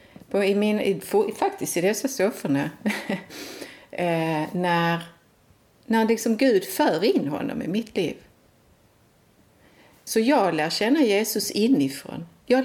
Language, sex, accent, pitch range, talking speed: Swedish, female, native, 165-225 Hz, 125 wpm